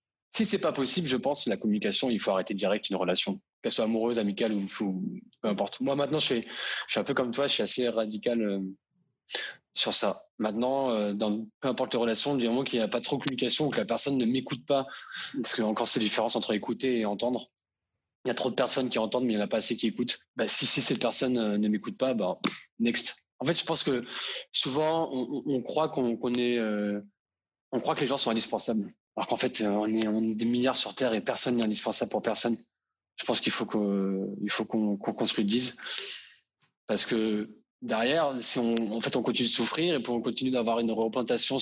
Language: French